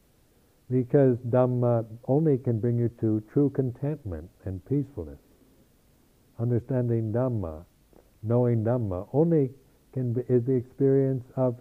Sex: male